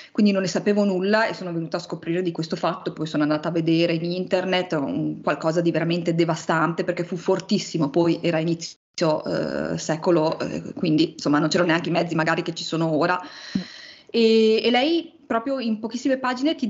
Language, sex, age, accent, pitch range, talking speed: Italian, female, 20-39, native, 175-245 Hz, 190 wpm